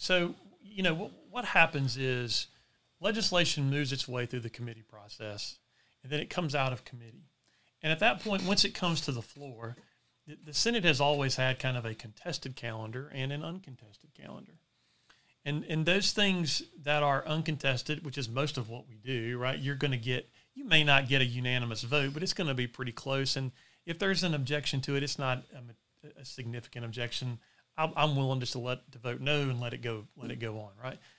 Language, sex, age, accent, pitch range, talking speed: English, male, 40-59, American, 125-155 Hz, 210 wpm